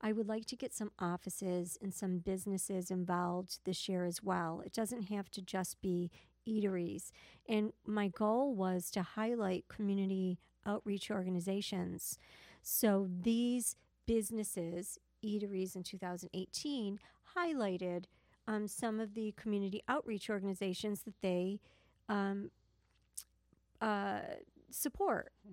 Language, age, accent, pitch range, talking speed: English, 40-59, American, 185-220 Hz, 120 wpm